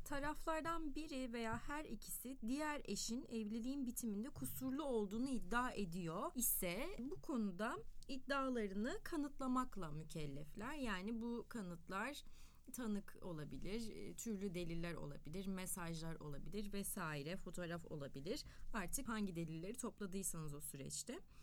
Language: Turkish